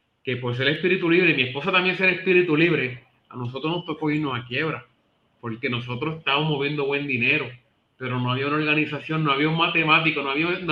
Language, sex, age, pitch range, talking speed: Spanish, male, 30-49, 145-190 Hz, 215 wpm